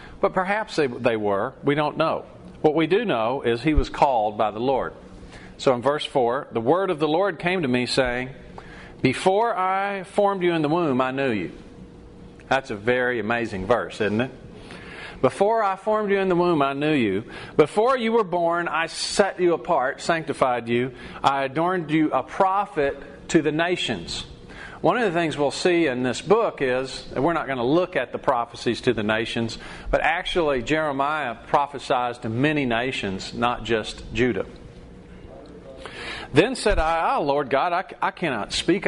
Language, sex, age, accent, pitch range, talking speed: English, male, 40-59, American, 125-175 Hz, 180 wpm